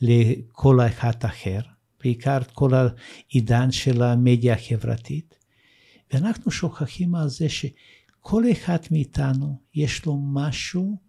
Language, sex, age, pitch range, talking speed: Hebrew, male, 60-79, 125-175 Hz, 105 wpm